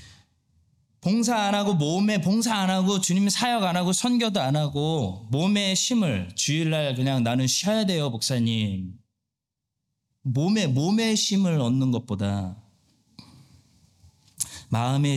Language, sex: Korean, male